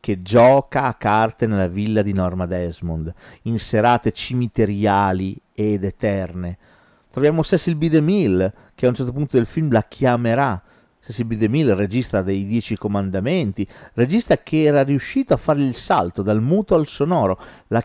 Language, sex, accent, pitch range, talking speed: Italian, male, native, 100-135 Hz, 160 wpm